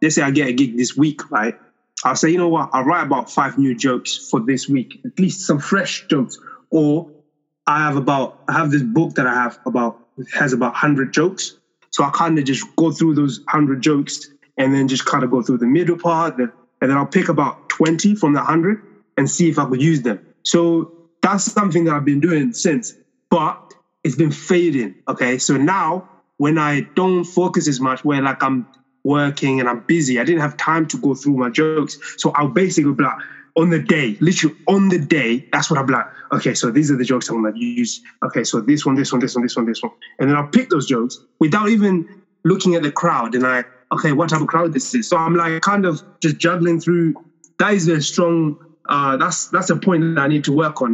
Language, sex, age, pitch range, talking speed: English, male, 20-39, 135-170 Hz, 235 wpm